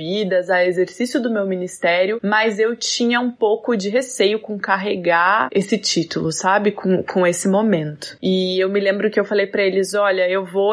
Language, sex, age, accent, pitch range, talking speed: Portuguese, female, 20-39, Brazilian, 190-230 Hz, 190 wpm